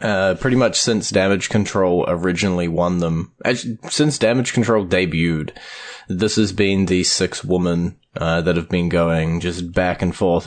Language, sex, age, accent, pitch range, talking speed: English, male, 20-39, Australian, 90-105 Hz, 155 wpm